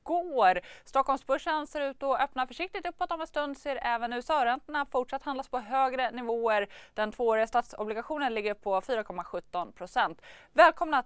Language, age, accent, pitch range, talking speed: Swedish, 20-39, native, 225-275 Hz, 145 wpm